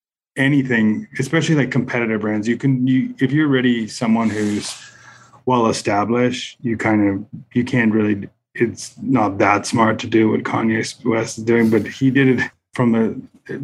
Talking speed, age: 165 wpm, 20-39